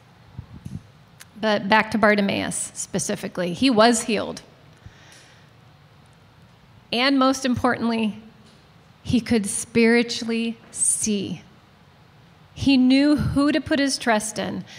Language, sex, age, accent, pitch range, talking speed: English, female, 30-49, American, 190-235 Hz, 95 wpm